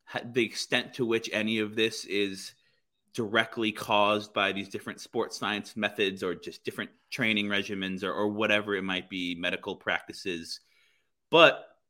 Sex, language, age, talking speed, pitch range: male, English, 30-49, 150 wpm, 100-120 Hz